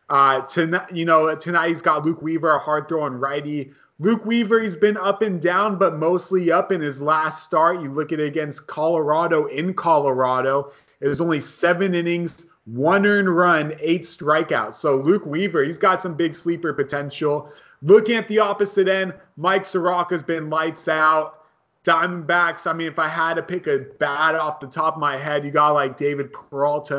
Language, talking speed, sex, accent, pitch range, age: English, 190 wpm, male, American, 145-175 Hz, 30-49